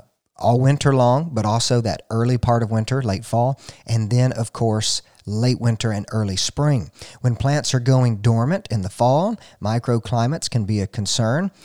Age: 50-69